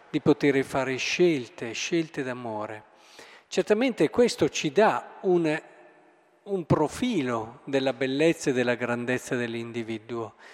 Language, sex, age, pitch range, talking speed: Italian, male, 50-69, 140-205 Hz, 110 wpm